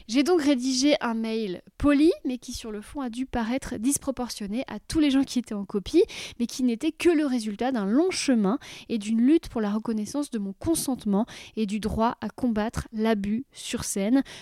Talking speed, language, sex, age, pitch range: 205 wpm, French, female, 20-39, 230-285 Hz